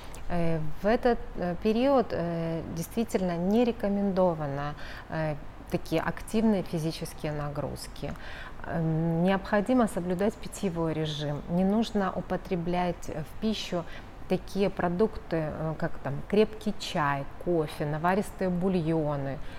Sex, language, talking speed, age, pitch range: female, Russian, 85 wpm, 30-49, 155-195 Hz